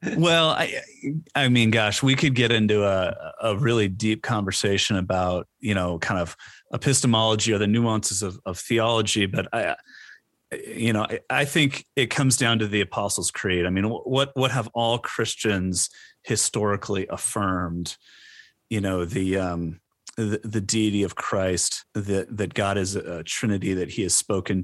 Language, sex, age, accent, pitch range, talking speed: English, male, 30-49, American, 95-115 Hz, 165 wpm